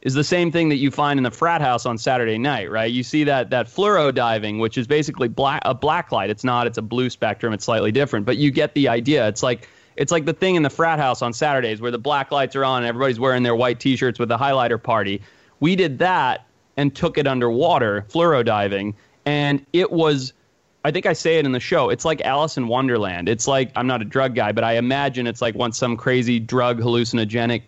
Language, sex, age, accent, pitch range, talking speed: English, male, 30-49, American, 115-145 Hz, 245 wpm